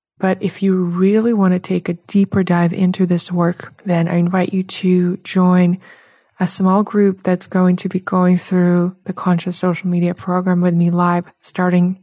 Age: 20-39